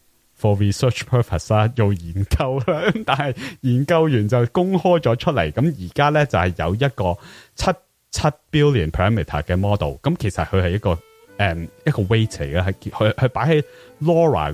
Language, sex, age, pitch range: English, male, 30-49, 95-135 Hz